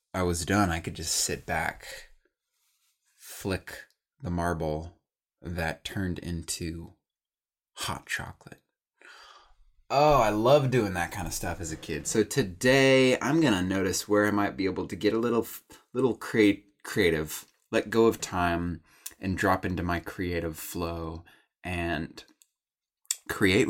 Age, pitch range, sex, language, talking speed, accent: 20-39, 85-110 Hz, male, English, 145 wpm, American